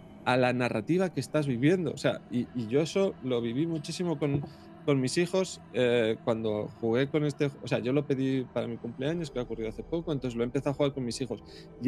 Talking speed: 230 wpm